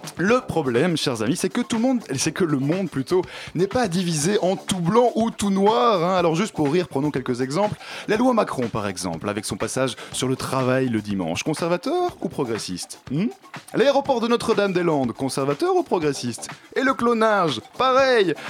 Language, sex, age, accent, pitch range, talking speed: French, male, 20-39, French, 125-200 Hz, 185 wpm